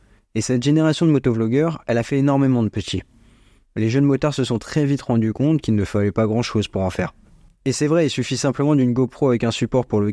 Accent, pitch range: French, 110-130 Hz